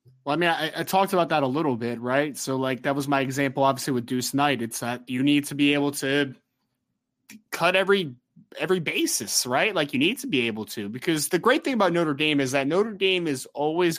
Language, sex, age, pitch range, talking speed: English, male, 20-39, 135-190 Hz, 235 wpm